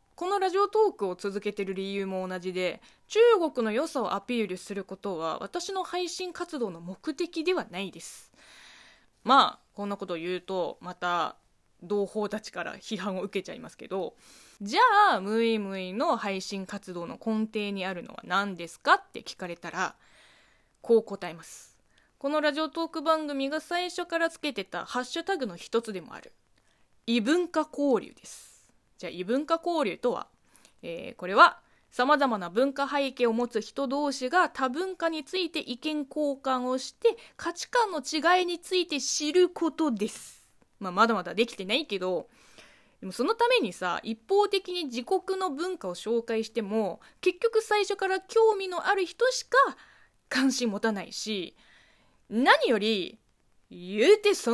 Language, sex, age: Japanese, female, 20-39